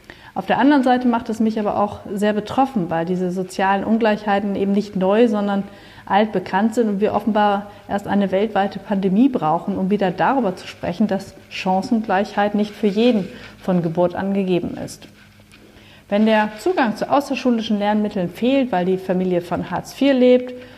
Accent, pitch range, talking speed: German, 185-220 Hz, 170 wpm